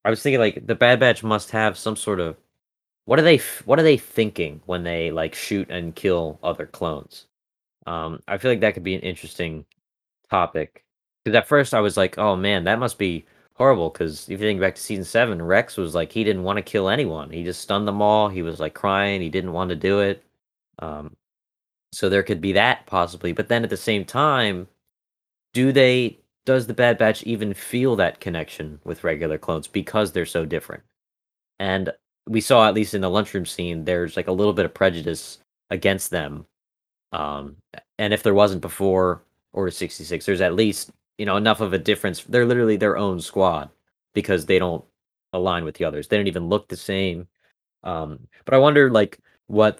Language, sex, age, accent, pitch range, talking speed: English, male, 20-39, American, 85-110 Hz, 205 wpm